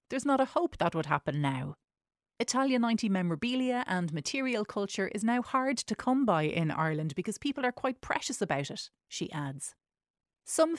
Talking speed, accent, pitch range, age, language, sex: 180 wpm, Irish, 155-215 Hz, 30-49, English, female